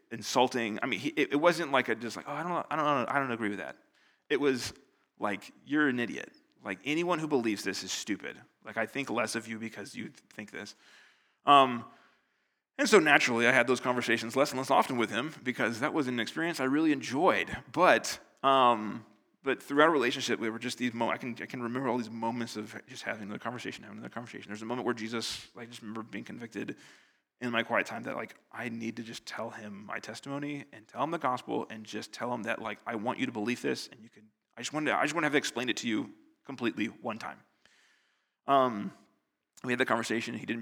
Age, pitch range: 30-49, 110-135 Hz